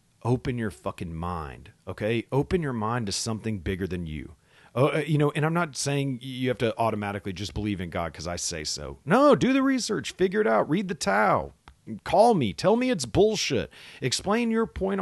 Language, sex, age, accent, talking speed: English, male, 40-59, American, 210 wpm